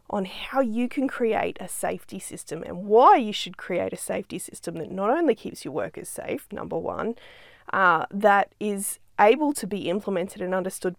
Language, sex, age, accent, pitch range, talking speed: English, female, 20-39, Australian, 195-275 Hz, 185 wpm